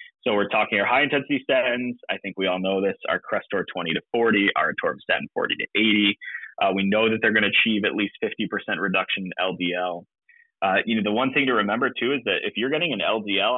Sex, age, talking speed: male, 20-39, 235 wpm